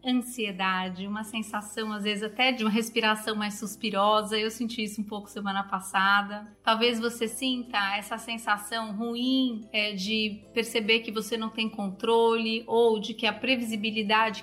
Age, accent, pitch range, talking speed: 30-49, Brazilian, 215-250 Hz, 155 wpm